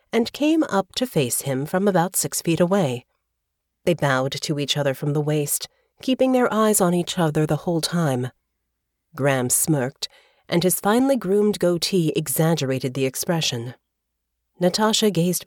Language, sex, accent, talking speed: English, female, American, 155 wpm